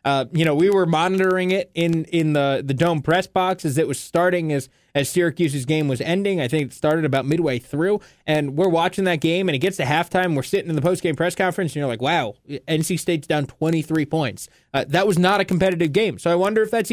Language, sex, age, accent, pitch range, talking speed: English, male, 20-39, American, 150-185 Hz, 245 wpm